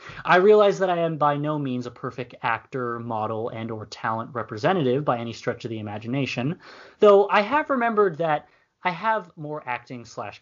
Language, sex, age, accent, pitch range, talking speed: English, male, 20-39, American, 115-165 Hz, 185 wpm